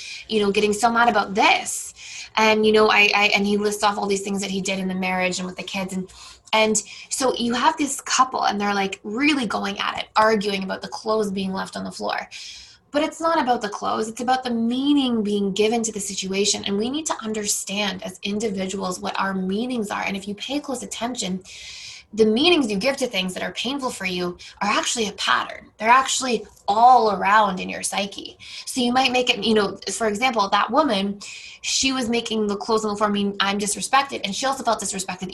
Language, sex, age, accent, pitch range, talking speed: English, female, 20-39, American, 200-240 Hz, 225 wpm